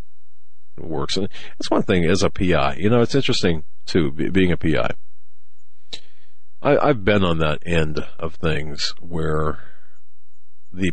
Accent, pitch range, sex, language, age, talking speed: American, 75-90 Hz, male, English, 50-69, 145 wpm